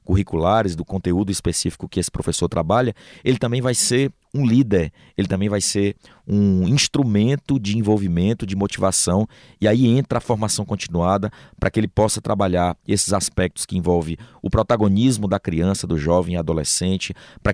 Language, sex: Portuguese, male